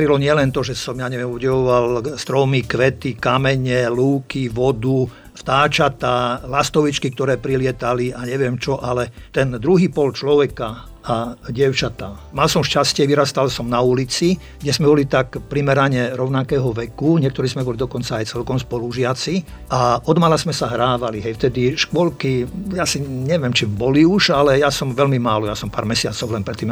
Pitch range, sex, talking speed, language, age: 120-145 Hz, male, 165 wpm, Slovak, 50-69